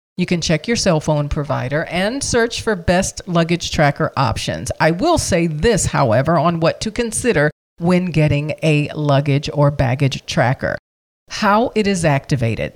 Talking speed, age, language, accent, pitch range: 160 wpm, 40-59, English, American, 145-185 Hz